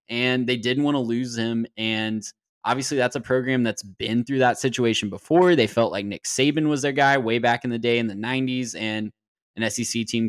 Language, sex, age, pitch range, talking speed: English, male, 10-29, 110-130 Hz, 220 wpm